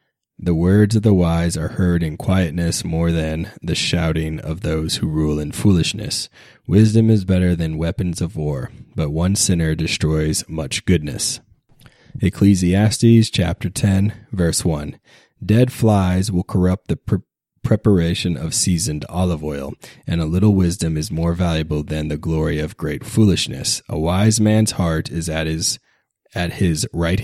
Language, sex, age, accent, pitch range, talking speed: English, male, 30-49, American, 80-105 Hz, 155 wpm